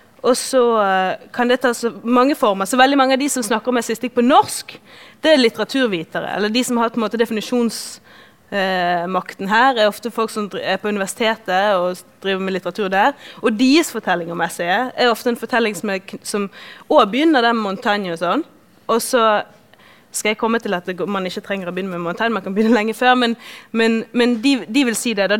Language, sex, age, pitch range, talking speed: English, female, 20-39, 195-240 Hz, 215 wpm